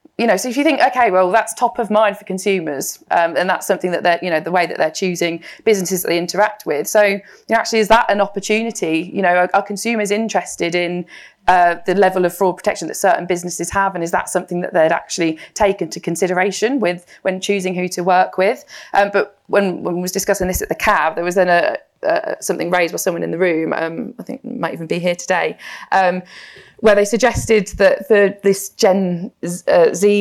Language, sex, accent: English, female, British